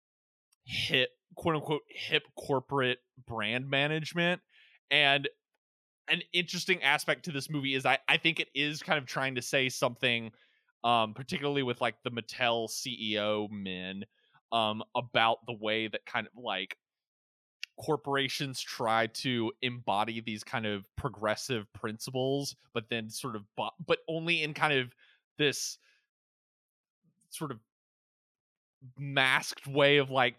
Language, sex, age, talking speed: English, male, 20-39, 130 wpm